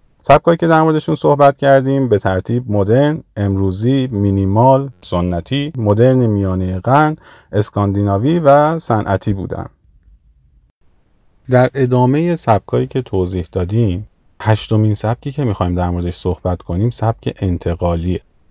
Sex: male